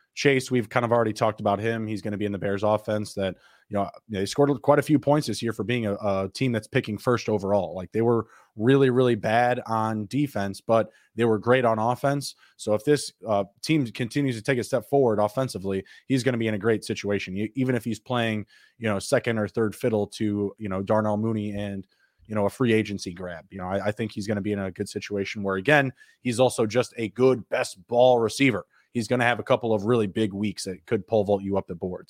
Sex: male